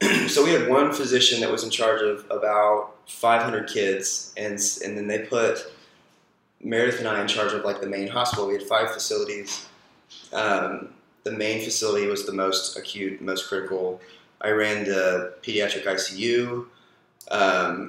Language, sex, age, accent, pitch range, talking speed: English, male, 20-39, American, 100-120 Hz, 160 wpm